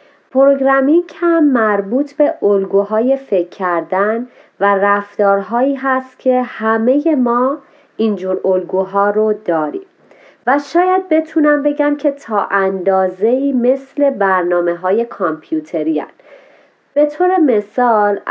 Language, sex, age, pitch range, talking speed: Persian, female, 30-49, 190-275 Hz, 100 wpm